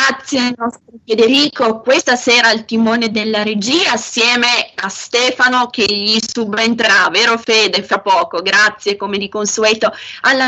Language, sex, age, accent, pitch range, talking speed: Italian, female, 20-39, native, 205-260 Hz, 145 wpm